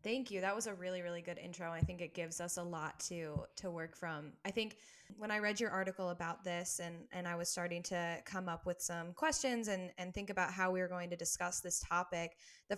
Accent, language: American, English